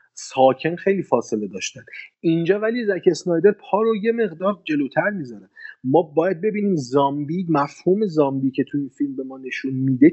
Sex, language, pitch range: male, Persian, 125-165 Hz